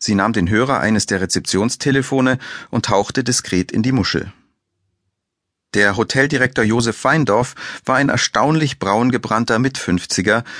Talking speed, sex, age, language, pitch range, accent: 130 wpm, male, 40-59, German, 105-140 Hz, German